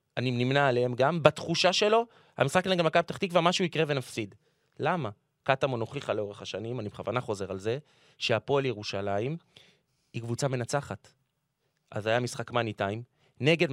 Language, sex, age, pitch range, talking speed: Hebrew, male, 30-49, 115-150 Hz, 150 wpm